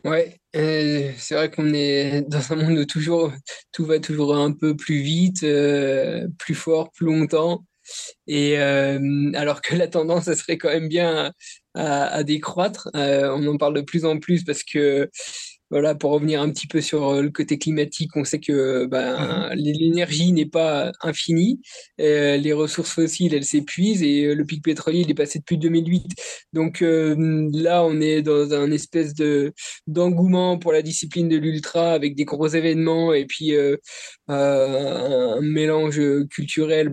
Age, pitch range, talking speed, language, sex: 20-39, 145-165 Hz, 170 wpm, French, male